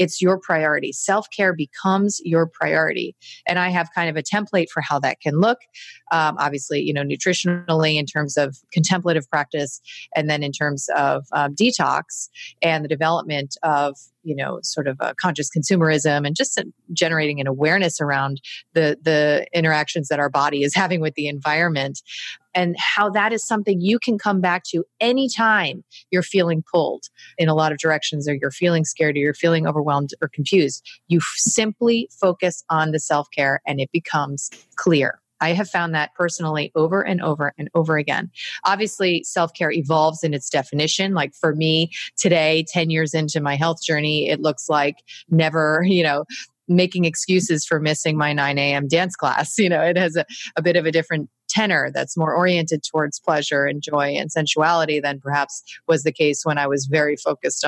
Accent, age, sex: American, 30-49, female